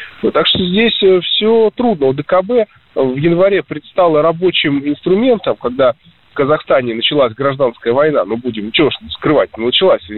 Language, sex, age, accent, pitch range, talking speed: Russian, male, 20-39, native, 130-195 Hz, 155 wpm